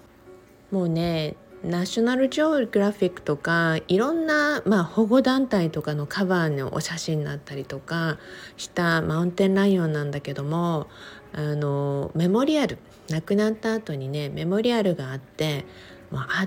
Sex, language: female, Japanese